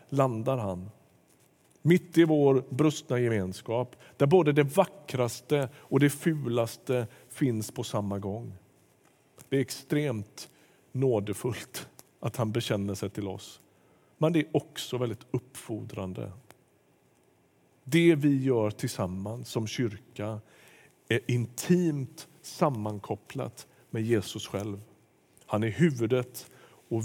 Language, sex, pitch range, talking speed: Swedish, male, 110-145 Hz, 110 wpm